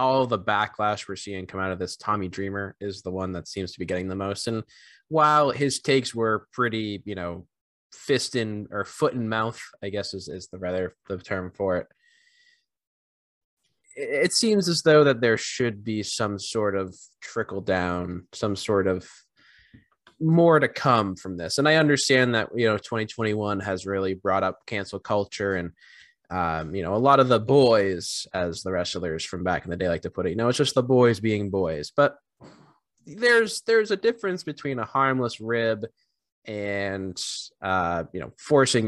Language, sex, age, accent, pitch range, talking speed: English, male, 20-39, American, 95-130 Hz, 185 wpm